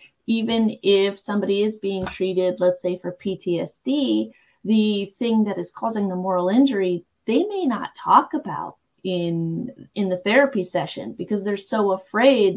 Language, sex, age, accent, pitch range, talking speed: English, female, 30-49, American, 180-215 Hz, 155 wpm